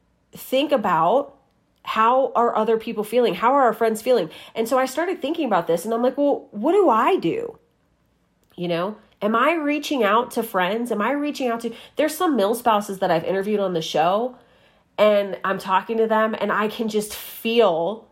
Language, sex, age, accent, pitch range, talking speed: English, female, 30-49, American, 180-235 Hz, 200 wpm